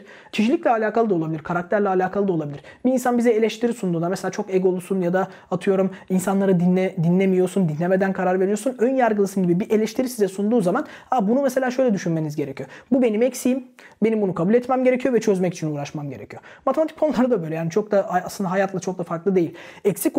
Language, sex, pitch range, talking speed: Turkish, male, 180-235 Hz, 195 wpm